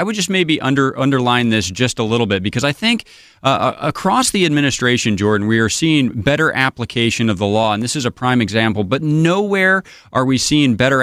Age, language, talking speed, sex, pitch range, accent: 30-49, English, 210 wpm, male, 110-140 Hz, American